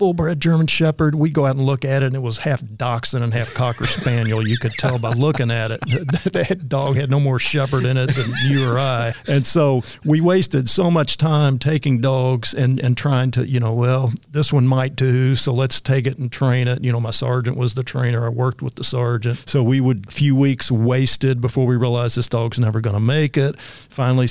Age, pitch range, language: 50-69, 120-140 Hz, English